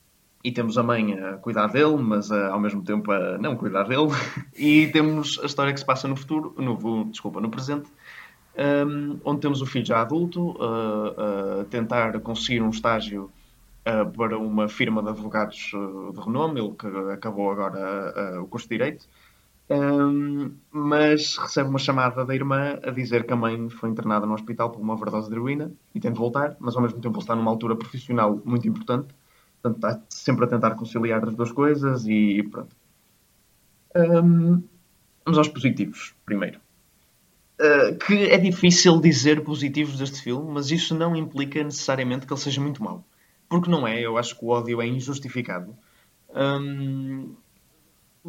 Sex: male